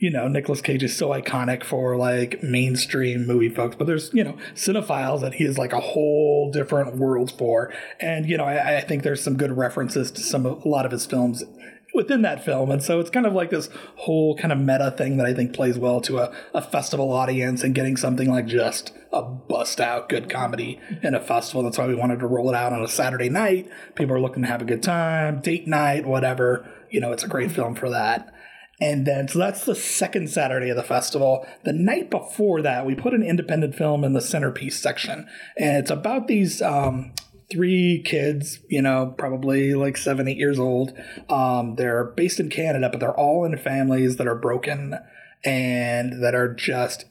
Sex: male